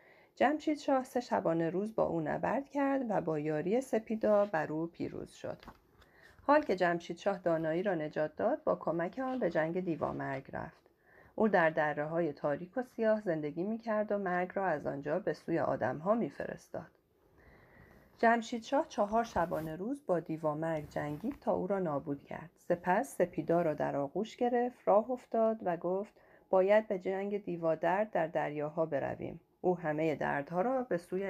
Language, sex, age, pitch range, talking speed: Persian, female, 40-59, 160-220 Hz, 170 wpm